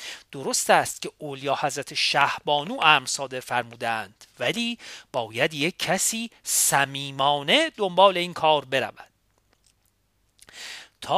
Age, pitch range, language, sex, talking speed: 40-59, 140-205 Hz, Persian, male, 95 wpm